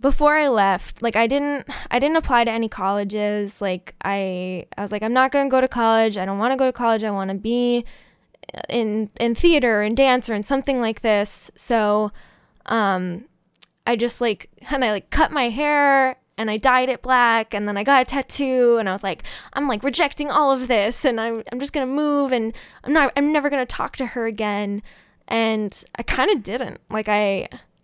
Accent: American